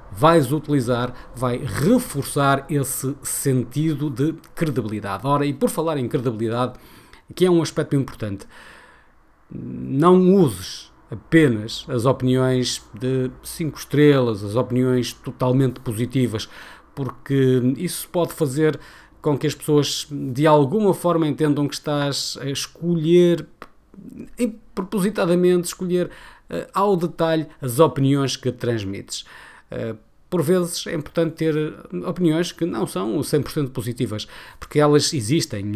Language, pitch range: Portuguese, 125-155 Hz